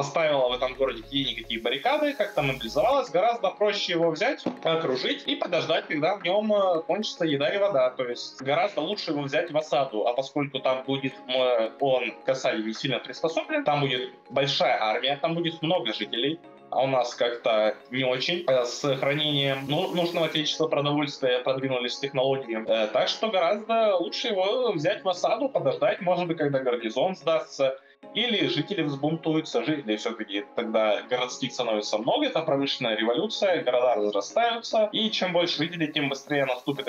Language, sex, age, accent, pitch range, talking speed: Russian, male, 20-39, native, 120-170 Hz, 160 wpm